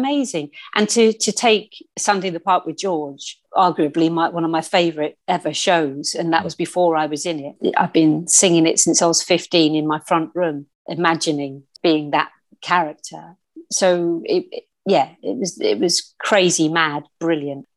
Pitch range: 155-200 Hz